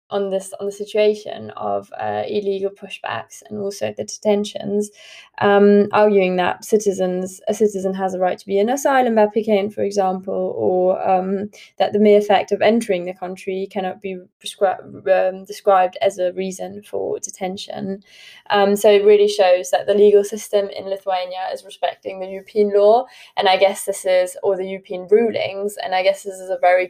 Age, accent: 20-39, British